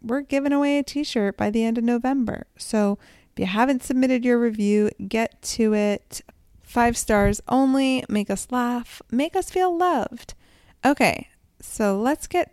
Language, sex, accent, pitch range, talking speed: English, female, American, 180-235 Hz, 165 wpm